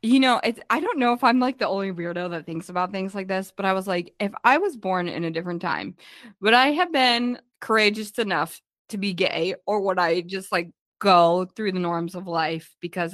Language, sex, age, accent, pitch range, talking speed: English, female, 20-39, American, 180-235 Hz, 235 wpm